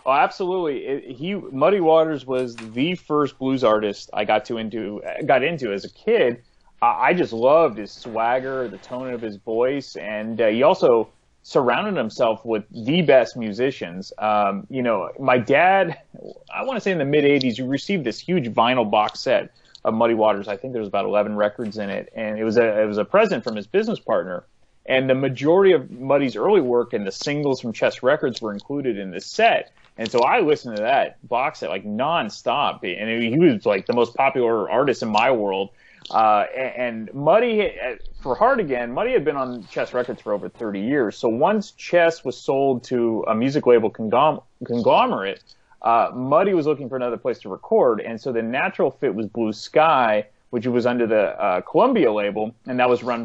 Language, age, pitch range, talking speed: English, 30-49, 110-140 Hz, 200 wpm